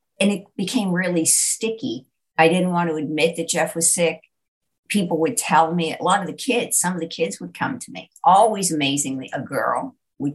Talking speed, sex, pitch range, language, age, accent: 210 wpm, female, 160-225 Hz, English, 50-69, American